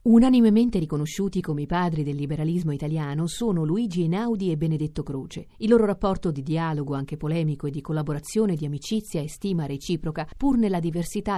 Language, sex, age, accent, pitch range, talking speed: Italian, female, 40-59, native, 155-205 Hz, 170 wpm